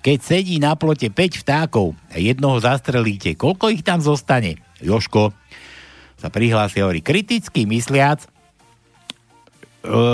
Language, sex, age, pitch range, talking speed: Slovak, male, 60-79, 115-185 Hz, 120 wpm